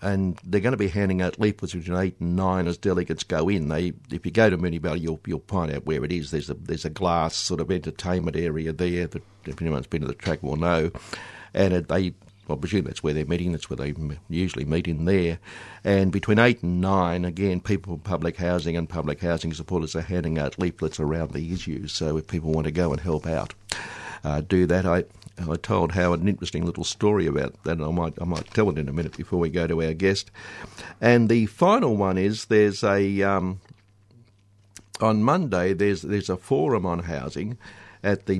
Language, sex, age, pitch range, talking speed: English, male, 60-79, 80-100 Hz, 220 wpm